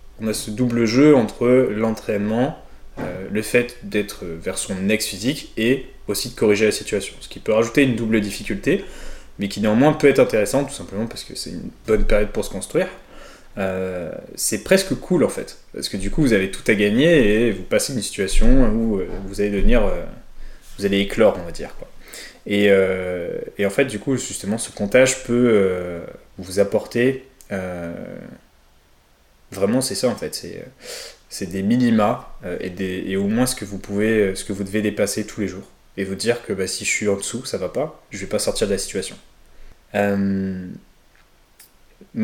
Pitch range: 95-120 Hz